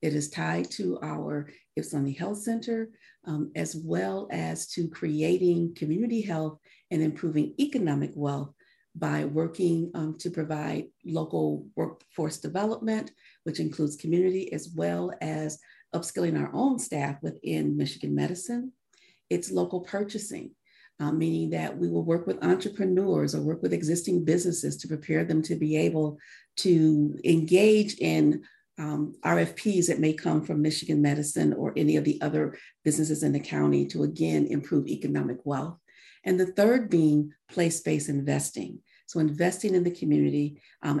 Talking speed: 145 wpm